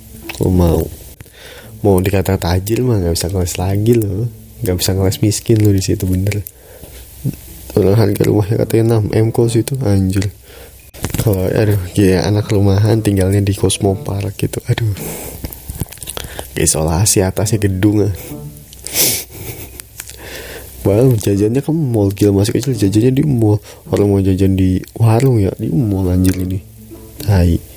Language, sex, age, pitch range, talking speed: Indonesian, male, 20-39, 95-110 Hz, 135 wpm